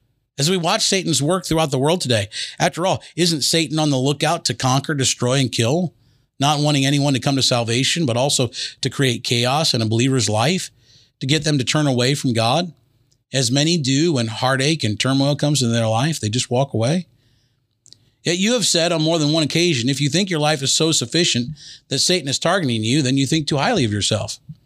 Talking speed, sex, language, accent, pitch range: 215 wpm, male, English, American, 125-160 Hz